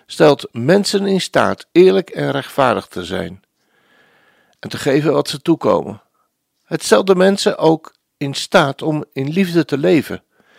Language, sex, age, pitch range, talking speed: Dutch, male, 60-79, 130-175 Hz, 155 wpm